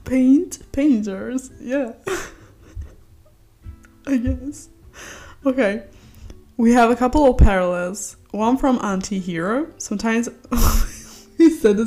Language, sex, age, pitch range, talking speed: English, female, 10-29, 165-215 Hz, 100 wpm